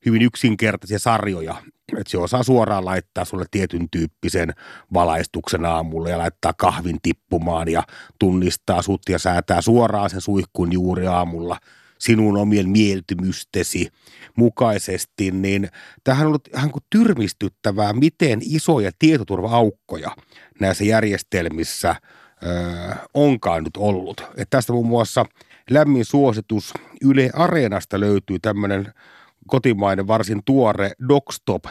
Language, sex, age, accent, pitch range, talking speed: Finnish, male, 30-49, native, 95-125 Hz, 115 wpm